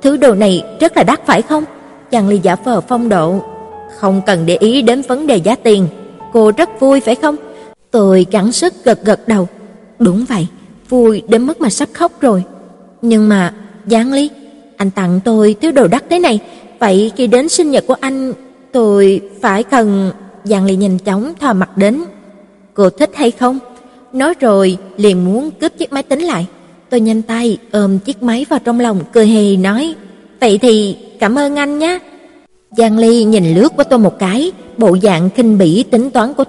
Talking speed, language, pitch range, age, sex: 195 wpm, Vietnamese, 200-265 Hz, 20-39, female